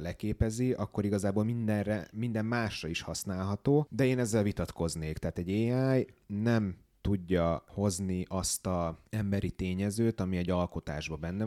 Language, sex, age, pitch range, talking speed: Hungarian, male, 30-49, 85-105 Hz, 135 wpm